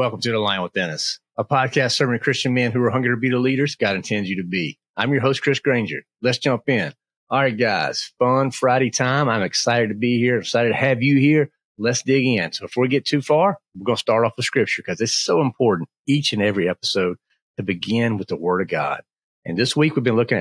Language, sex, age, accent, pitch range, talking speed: English, male, 40-59, American, 100-130 Hz, 250 wpm